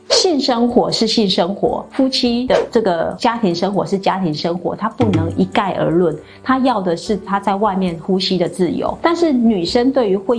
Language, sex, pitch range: Chinese, female, 180-225 Hz